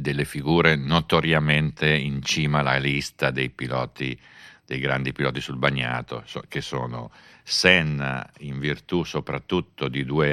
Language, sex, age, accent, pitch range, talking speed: Italian, male, 50-69, native, 65-80 Hz, 130 wpm